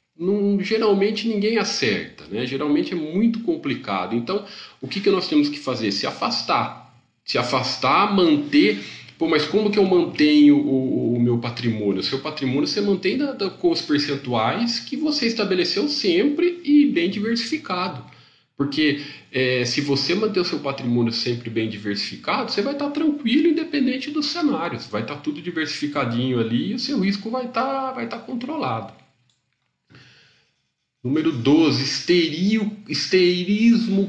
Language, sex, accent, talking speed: Portuguese, male, Brazilian, 150 wpm